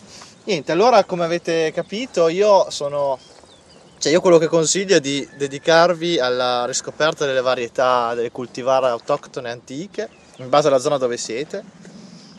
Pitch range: 130-170 Hz